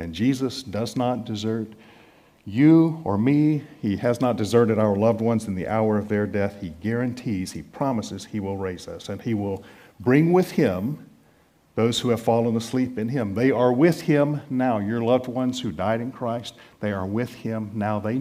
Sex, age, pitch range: male, 50-69, 105-145 Hz